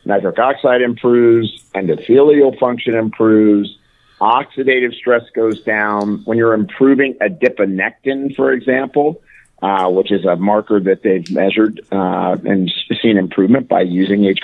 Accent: American